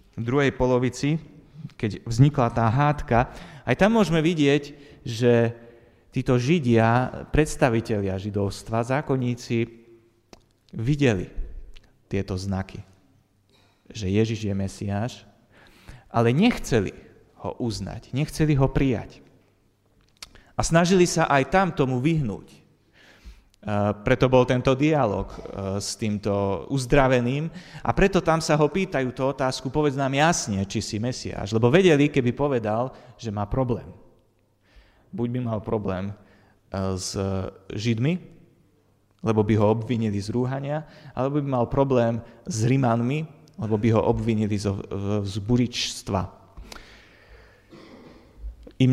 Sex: male